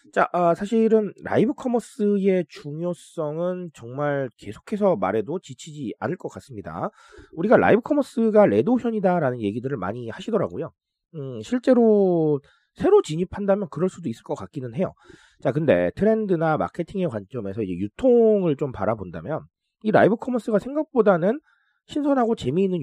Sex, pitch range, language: male, 125-200 Hz, Korean